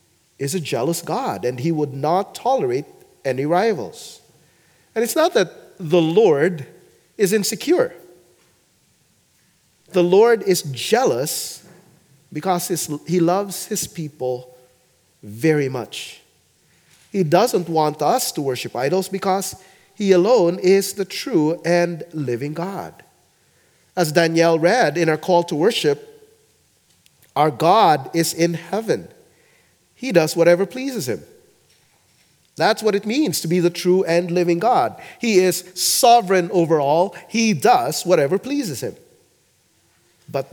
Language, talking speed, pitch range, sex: English, 125 wpm, 170-220 Hz, male